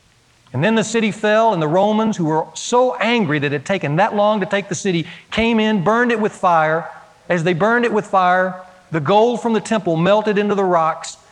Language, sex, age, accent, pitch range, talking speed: English, male, 40-59, American, 135-190 Hz, 230 wpm